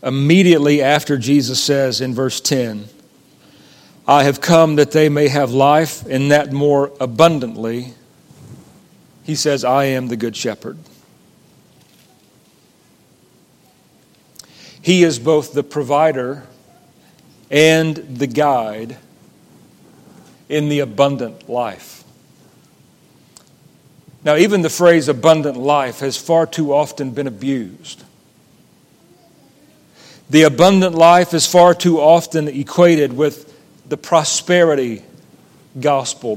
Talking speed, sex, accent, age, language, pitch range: 100 wpm, male, American, 40-59, English, 135-165 Hz